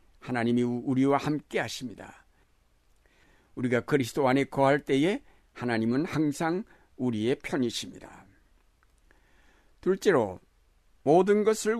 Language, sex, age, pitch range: Korean, male, 60-79, 120-155 Hz